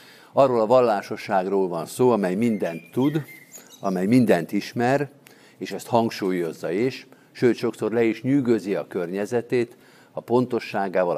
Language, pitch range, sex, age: Hungarian, 100-130 Hz, male, 50-69